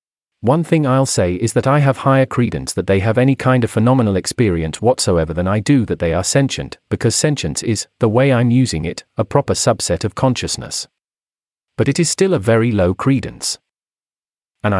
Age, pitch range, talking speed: 40-59, 105-135 Hz, 195 wpm